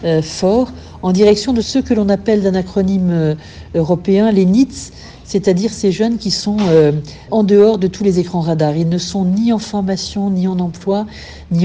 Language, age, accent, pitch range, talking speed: French, 60-79, French, 170-210 Hz, 180 wpm